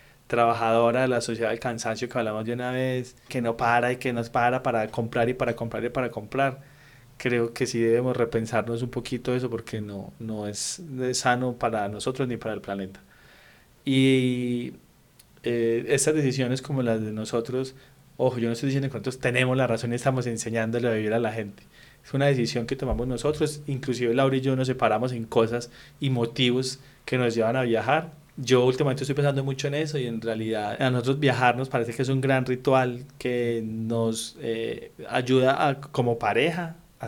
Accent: Colombian